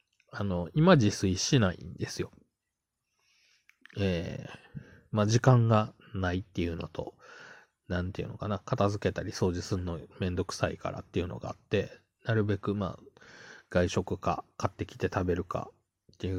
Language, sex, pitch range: Japanese, male, 95-125 Hz